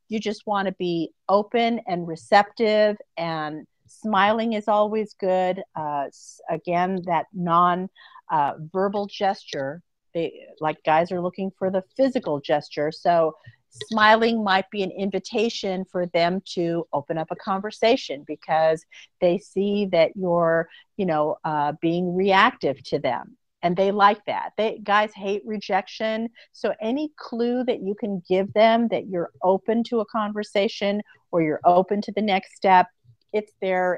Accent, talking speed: American, 145 wpm